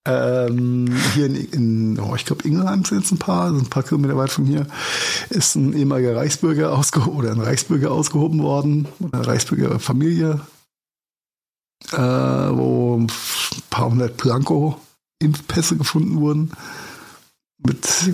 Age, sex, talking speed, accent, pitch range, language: 50-69, male, 130 wpm, German, 125-155 Hz, German